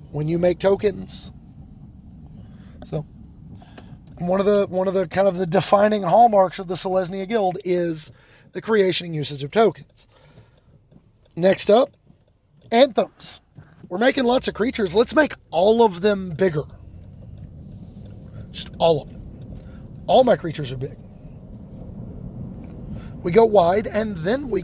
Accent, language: American, English